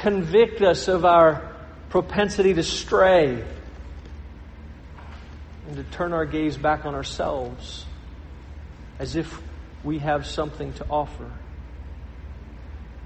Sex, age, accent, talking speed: male, 40-59, American, 100 wpm